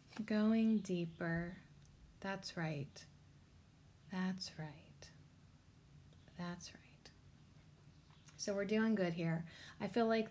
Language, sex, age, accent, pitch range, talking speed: English, female, 30-49, American, 180-210 Hz, 95 wpm